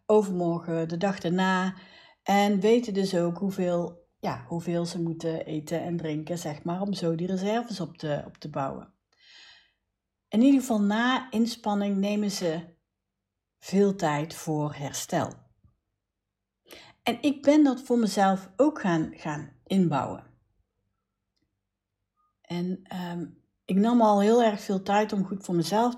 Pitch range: 165-220 Hz